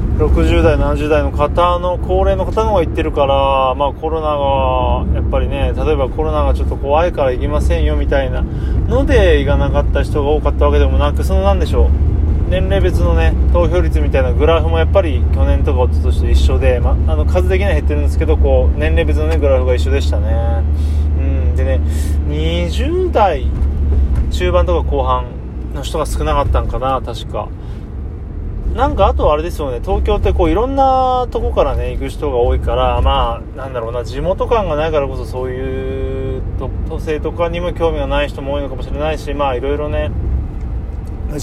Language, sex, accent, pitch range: Japanese, male, native, 75-100 Hz